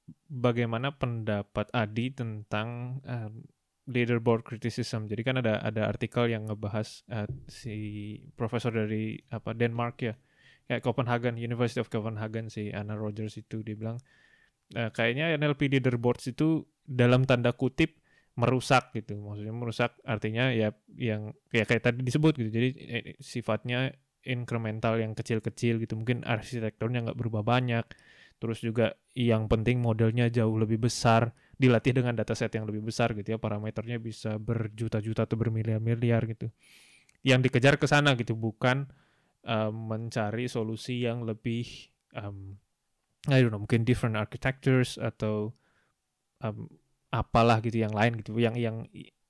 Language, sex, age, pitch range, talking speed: Indonesian, male, 20-39, 110-125 Hz, 140 wpm